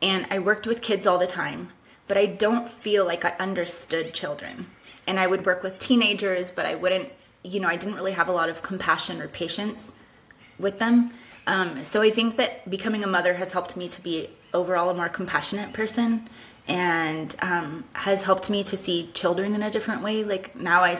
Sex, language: female, English